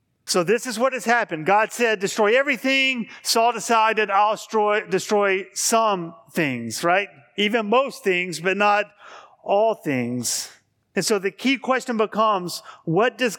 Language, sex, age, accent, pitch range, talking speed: English, male, 40-59, American, 170-215 Hz, 150 wpm